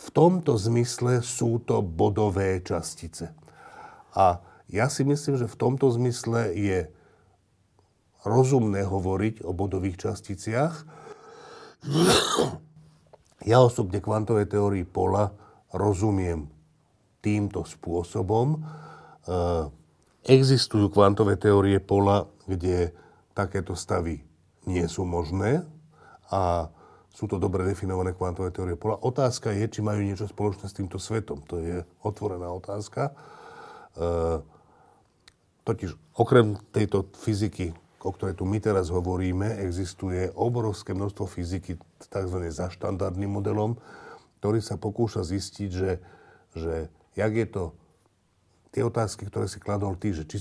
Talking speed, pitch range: 115 wpm, 90-110 Hz